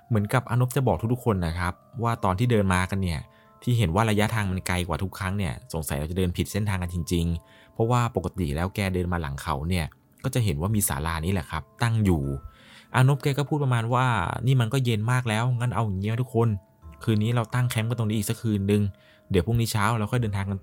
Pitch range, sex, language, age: 85-115 Hz, male, Thai, 20-39